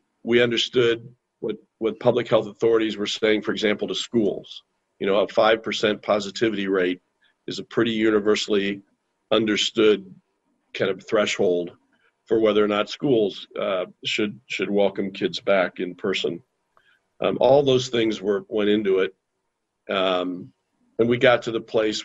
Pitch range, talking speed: 95-110 Hz, 150 wpm